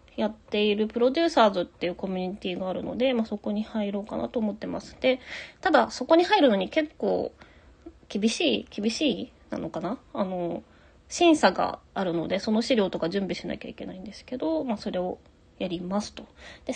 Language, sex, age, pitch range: Japanese, female, 20-39, 195-260 Hz